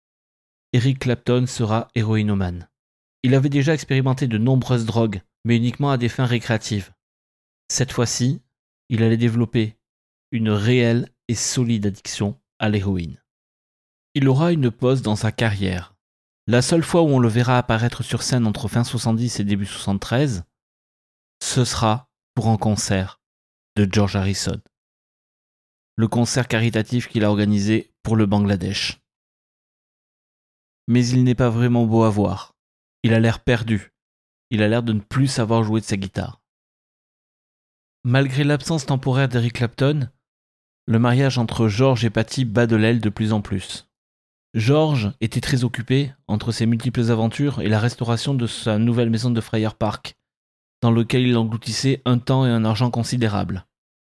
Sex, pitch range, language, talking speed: male, 105-125 Hz, French, 155 wpm